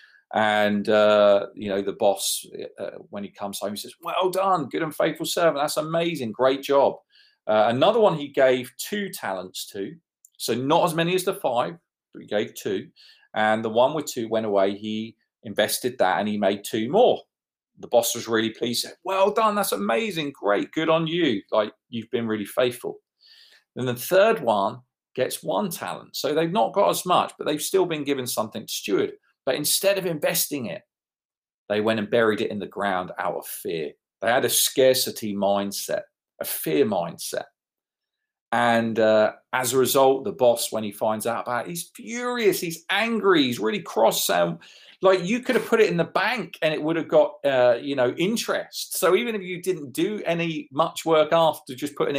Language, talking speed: English, 200 wpm